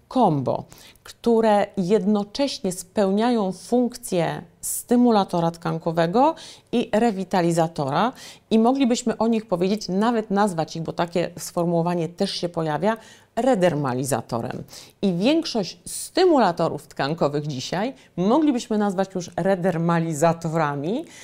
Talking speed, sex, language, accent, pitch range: 95 wpm, female, Polish, native, 170-235 Hz